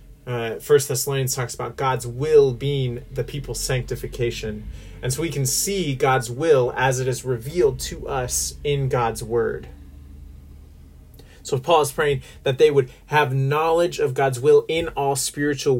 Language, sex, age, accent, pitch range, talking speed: English, male, 30-49, American, 120-140 Hz, 165 wpm